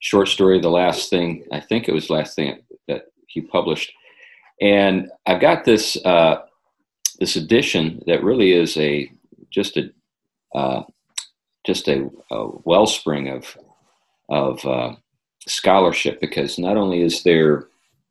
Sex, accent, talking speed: male, American, 135 wpm